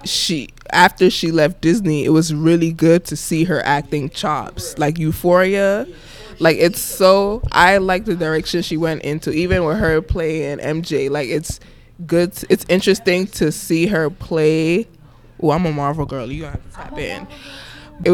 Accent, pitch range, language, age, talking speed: American, 150-175 Hz, English, 20-39, 170 wpm